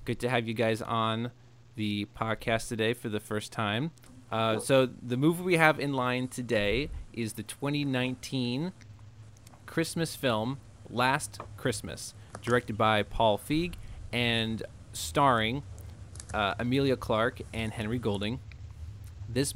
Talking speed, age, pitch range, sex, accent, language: 130 wpm, 30-49, 105-125 Hz, male, American, English